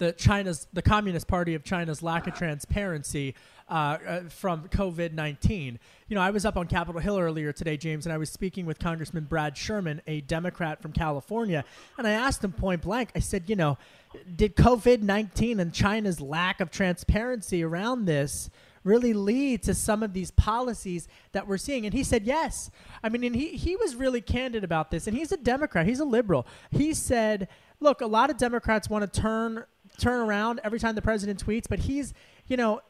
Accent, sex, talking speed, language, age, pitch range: American, male, 195 wpm, English, 30-49, 170-230 Hz